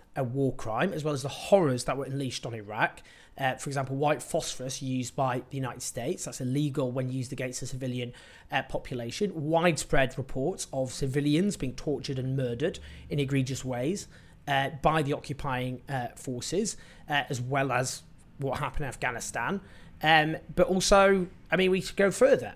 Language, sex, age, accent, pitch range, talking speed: English, male, 30-49, British, 130-170 Hz, 175 wpm